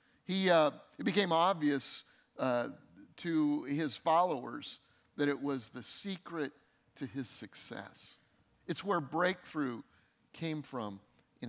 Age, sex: 50-69, male